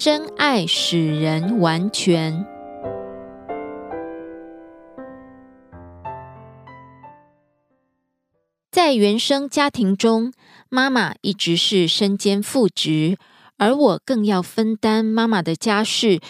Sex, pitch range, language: female, 165-225 Hz, Korean